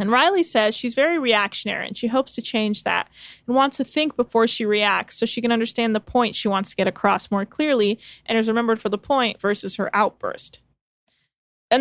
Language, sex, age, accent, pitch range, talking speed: English, female, 20-39, American, 210-260 Hz, 215 wpm